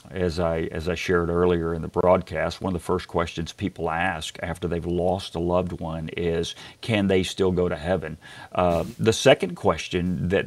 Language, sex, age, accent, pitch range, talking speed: English, male, 50-69, American, 90-120 Hz, 195 wpm